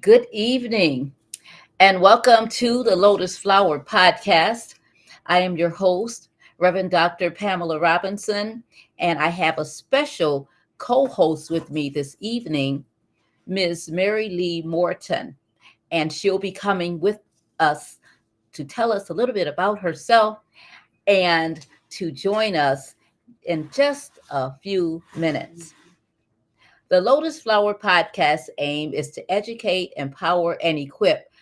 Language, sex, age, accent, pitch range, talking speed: English, female, 40-59, American, 165-225 Hz, 125 wpm